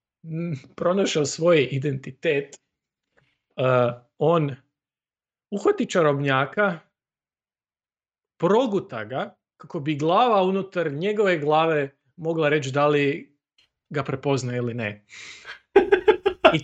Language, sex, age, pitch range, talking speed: Croatian, male, 40-59, 140-195 Hz, 85 wpm